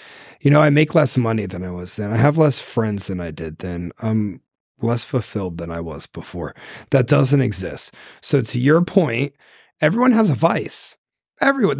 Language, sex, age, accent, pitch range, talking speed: English, male, 30-49, American, 115-150 Hz, 190 wpm